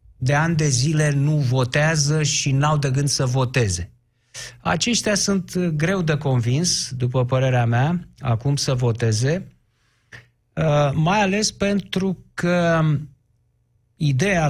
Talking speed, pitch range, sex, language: 115 wpm, 125-170 Hz, male, Romanian